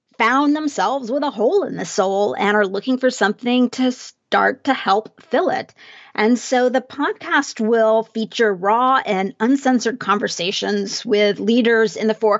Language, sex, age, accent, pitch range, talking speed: English, female, 40-59, American, 205-250 Hz, 165 wpm